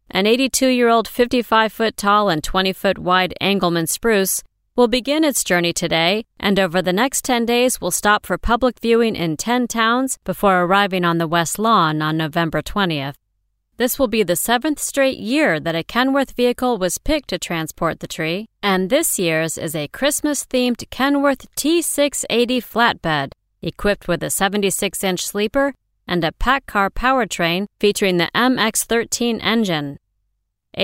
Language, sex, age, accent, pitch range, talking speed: English, female, 40-59, American, 170-240 Hz, 145 wpm